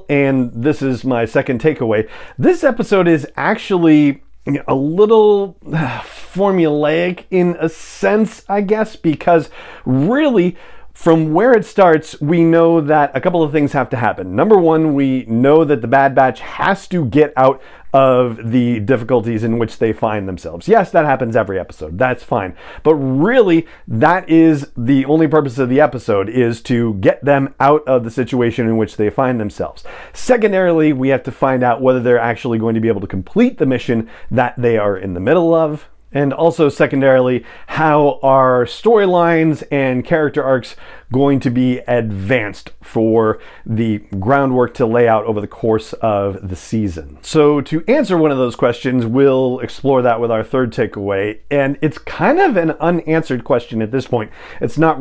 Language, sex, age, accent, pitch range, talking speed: English, male, 40-59, American, 120-160 Hz, 175 wpm